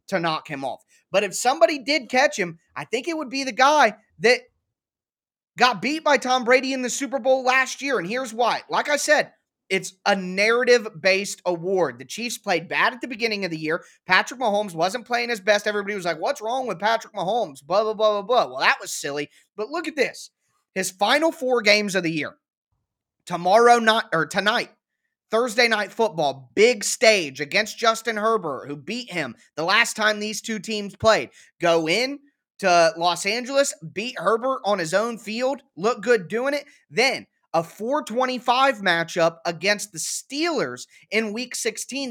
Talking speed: 185 wpm